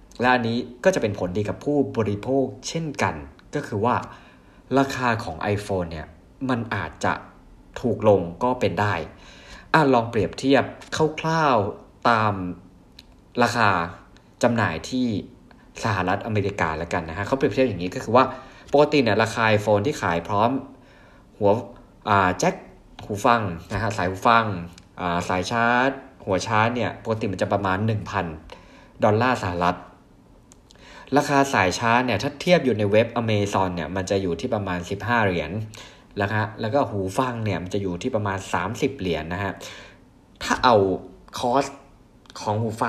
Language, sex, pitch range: Thai, male, 95-125 Hz